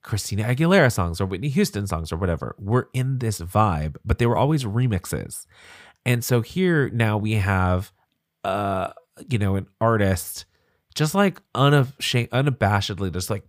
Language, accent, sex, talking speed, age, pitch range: English, American, male, 150 wpm, 30-49, 95-130 Hz